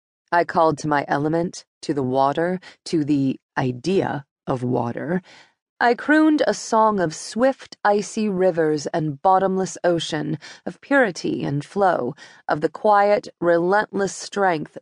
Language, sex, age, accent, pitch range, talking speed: English, female, 30-49, American, 155-205 Hz, 135 wpm